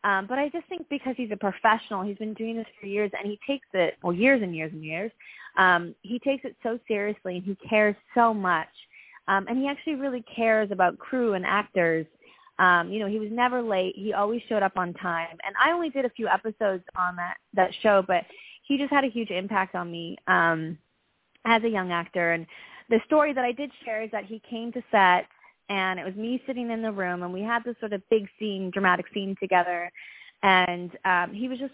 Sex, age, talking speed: female, 20-39, 230 wpm